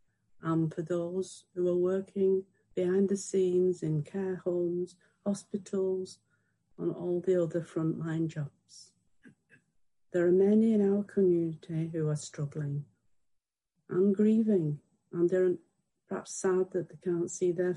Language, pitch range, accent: English, 160-190 Hz, British